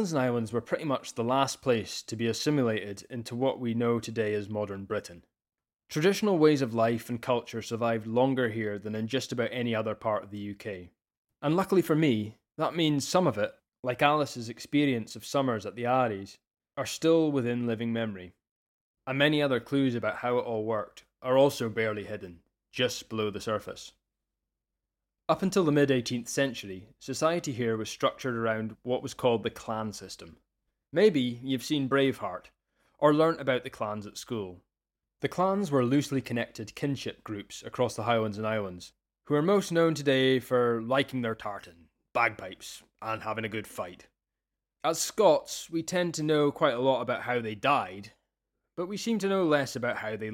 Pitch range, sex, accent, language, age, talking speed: 110-140 Hz, male, British, English, 20-39, 180 wpm